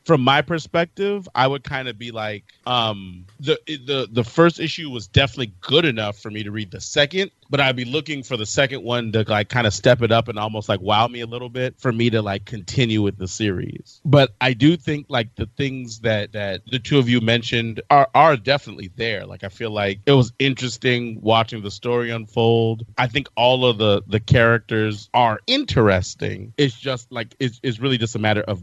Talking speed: 220 wpm